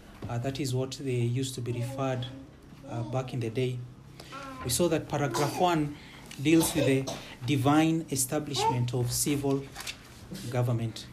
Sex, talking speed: male, 145 wpm